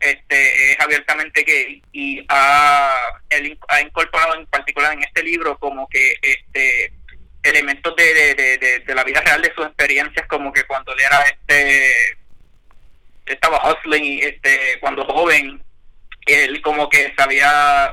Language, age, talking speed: Spanish, 20-39, 140 wpm